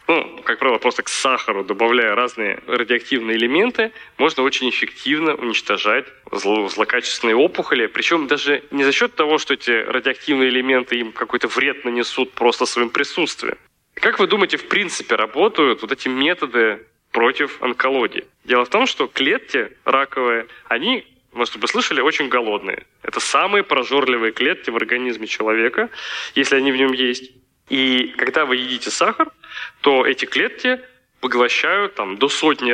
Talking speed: 150 wpm